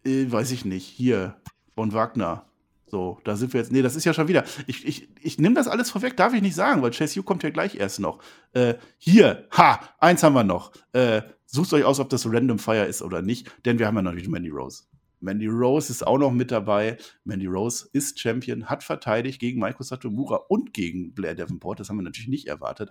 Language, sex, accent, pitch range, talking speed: German, male, German, 105-140 Hz, 230 wpm